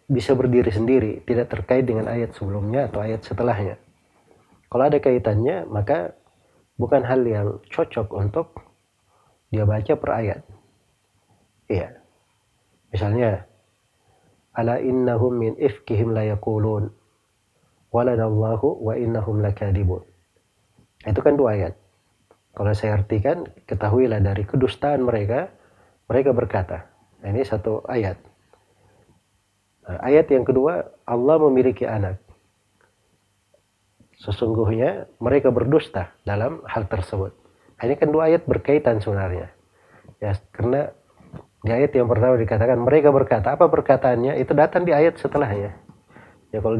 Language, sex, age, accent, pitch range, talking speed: Indonesian, male, 30-49, native, 100-125 Hz, 110 wpm